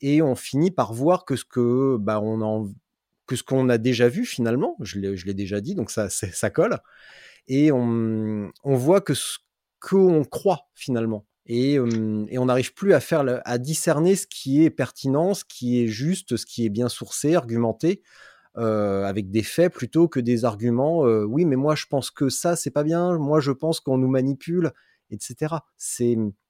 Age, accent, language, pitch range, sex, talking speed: 30-49, French, French, 115-150 Hz, male, 200 wpm